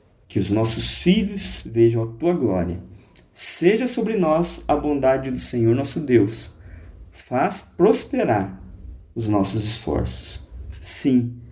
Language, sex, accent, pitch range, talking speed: Portuguese, male, Brazilian, 85-130 Hz, 120 wpm